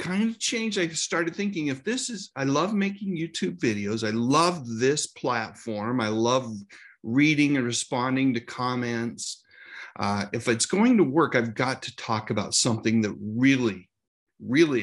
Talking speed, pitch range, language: 160 wpm, 110-145 Hz, English